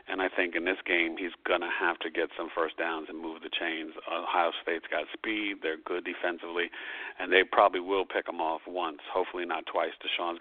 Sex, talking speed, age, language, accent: male, 220 wpm, 50-69, English, American